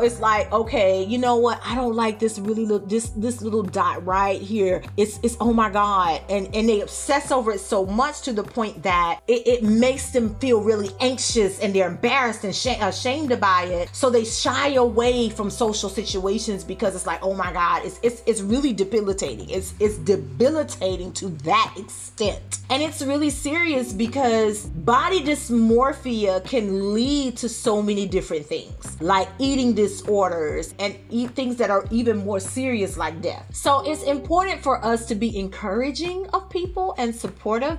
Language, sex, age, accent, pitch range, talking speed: English, female, 30-49, American, 195-245 Hz, 180 wpm